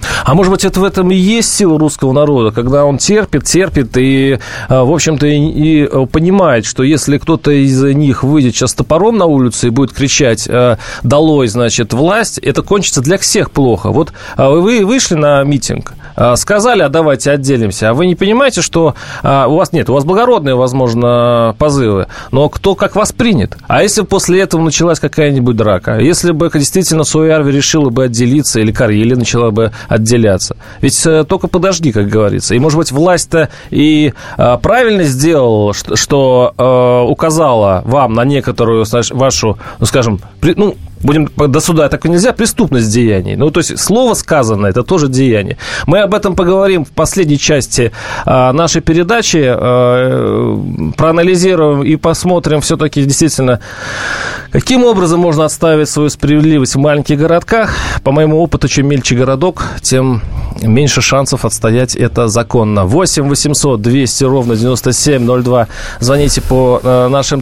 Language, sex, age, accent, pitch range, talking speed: Russian, male, 30-49, native, 125-160 Hz, 150 wpm